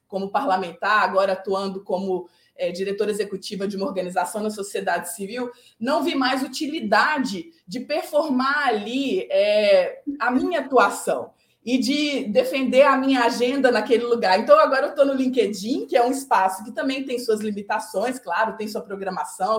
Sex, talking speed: female, 155 wpm